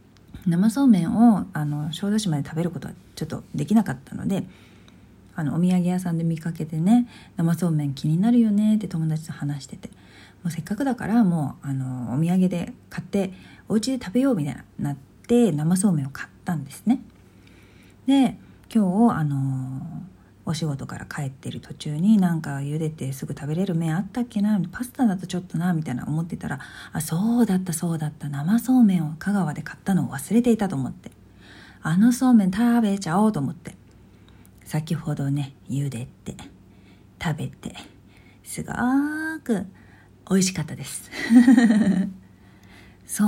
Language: Japanese